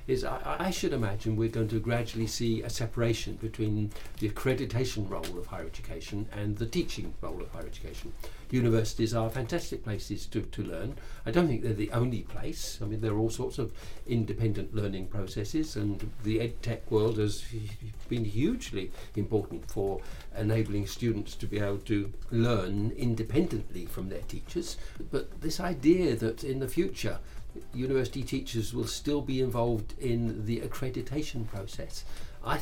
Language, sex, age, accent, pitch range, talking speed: English, male, 60-79, British, 105-125 Hz, 165 wpm